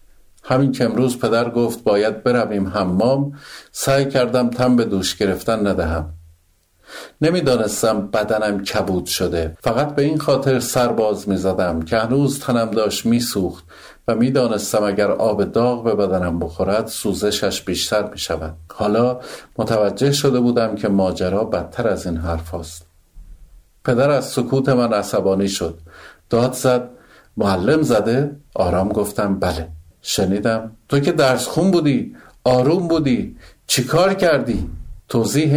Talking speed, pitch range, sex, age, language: 130 wpm, 90-125 Hz, male, 50-69, Persian